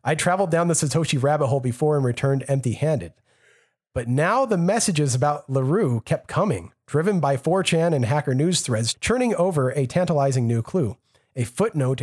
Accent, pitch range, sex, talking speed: American, 130-180 Hz, male, 170 wpm